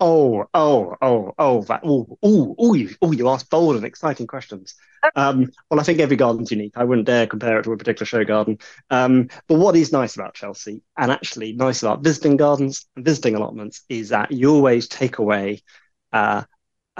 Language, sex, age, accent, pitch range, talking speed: English, male, 20-39, British, 115-160 Hz, 195 wpm